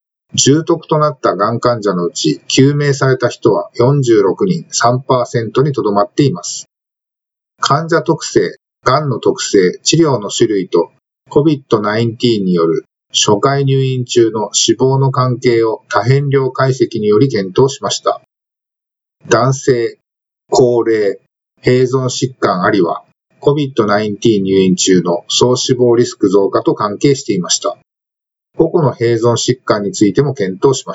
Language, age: Japanese, 50-69